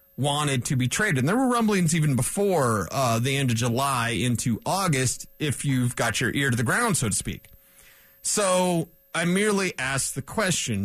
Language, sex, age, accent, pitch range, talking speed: English, male, 30-49, American, 130-185 Hz, 190 wpm